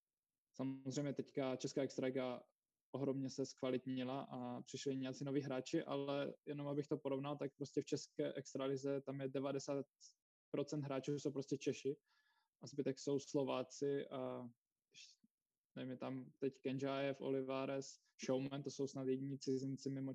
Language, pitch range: Czech, 135-155 Hz